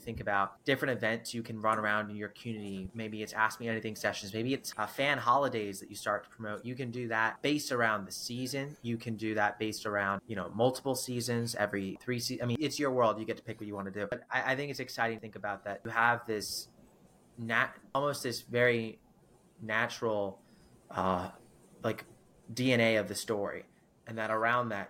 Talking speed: 215 wpm